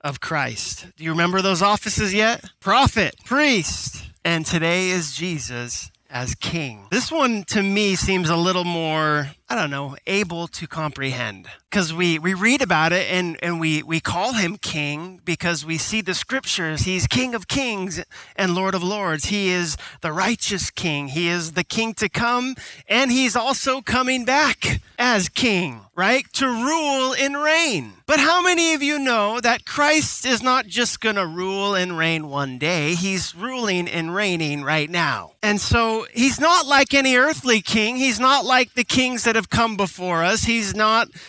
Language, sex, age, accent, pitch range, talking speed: English, male, 30-49, American, 165-240 Hz, 180 wpm